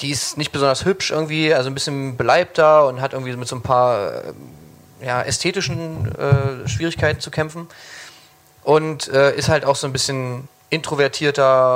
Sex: male